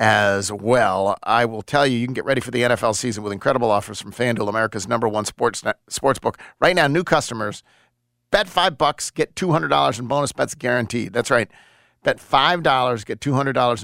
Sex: male